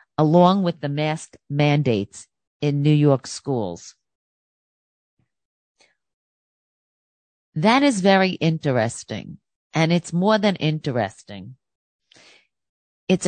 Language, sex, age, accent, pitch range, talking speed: English, female, 50-69, American, 130-175 Hz, 85 wpm